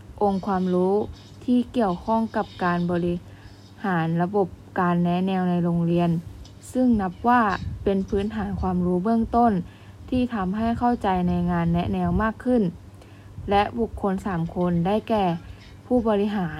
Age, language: 20-39, Thai